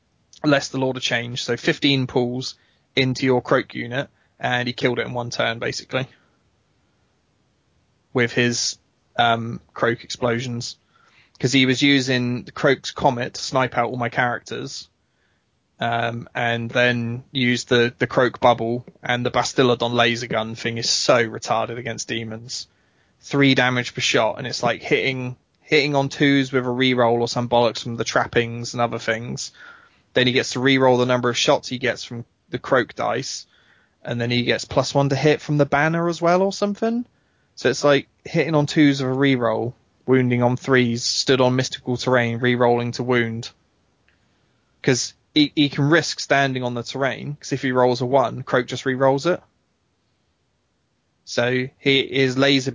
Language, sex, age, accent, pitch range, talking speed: English, male, 20-39, British, 120-135 Hz, 170 wpm